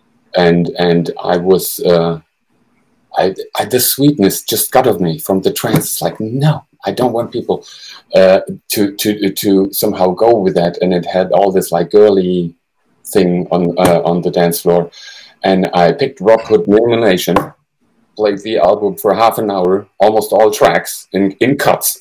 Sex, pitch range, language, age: male, 90-115 Hz, English, 50-69